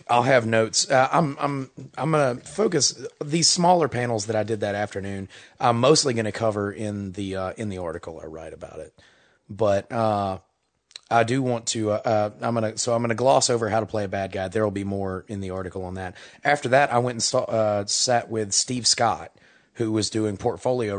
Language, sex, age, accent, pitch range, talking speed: English, male, 30-49, American, 100-115 Hz, 215 wpm